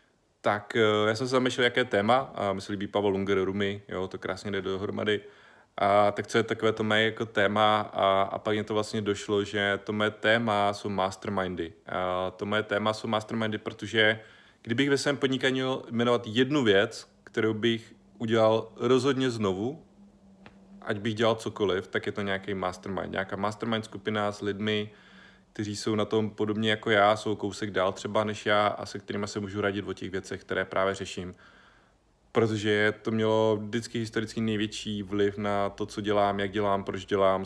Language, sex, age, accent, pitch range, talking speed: Czech, male, 30-49, native, 100-110 Hz, 180 wpm